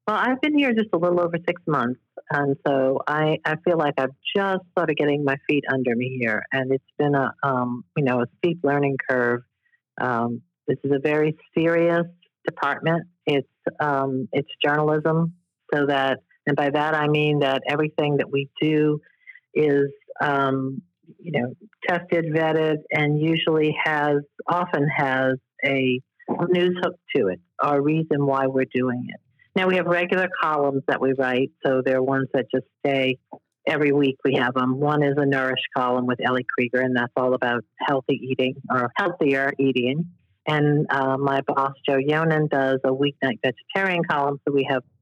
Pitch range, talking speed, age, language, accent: 135-160 Hz, 175 wpm, 50-69, English, American